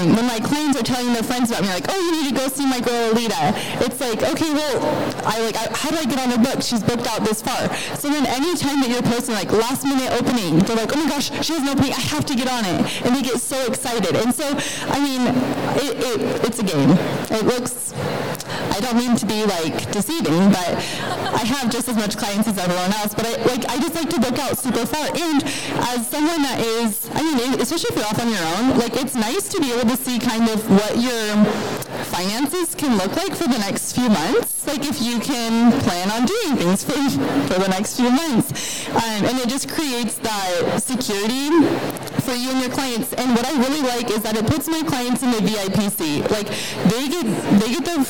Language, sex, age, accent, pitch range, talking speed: English, female, 20-39, American, 215-260 Hz, 235 wpm